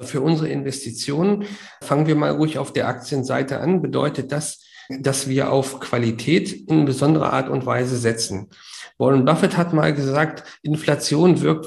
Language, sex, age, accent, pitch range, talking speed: German, male, 50-69, German, 130-155 Hz, 155 wpm